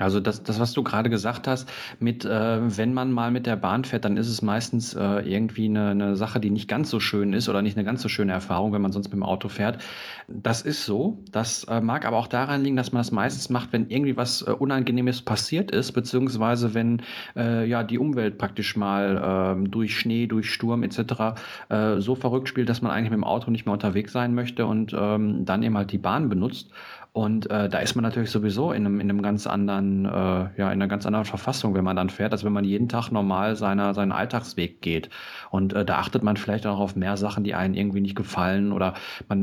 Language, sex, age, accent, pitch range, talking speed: German, male, 40-59, German, 100-115 Hz, 240 wpm